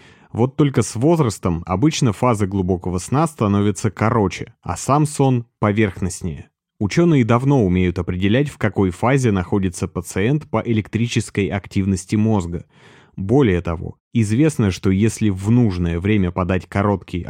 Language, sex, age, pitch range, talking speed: Russian, male, 30-49, 95-120 Hz, 130 wpm